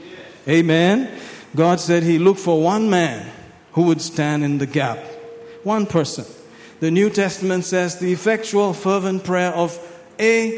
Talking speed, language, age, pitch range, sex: 145 wpm, English, 50-69, 150-180 Hz, male